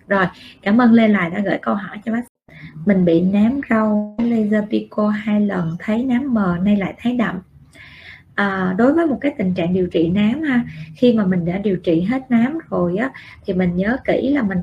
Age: 20-39